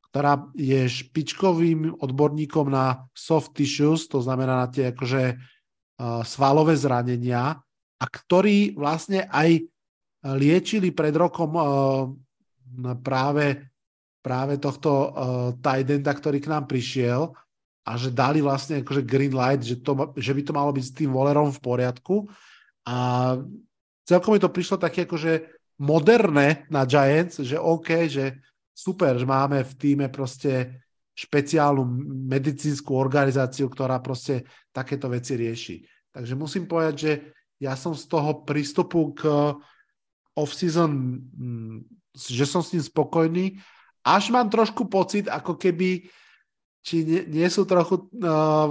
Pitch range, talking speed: 135-165 Hz, 130 wpm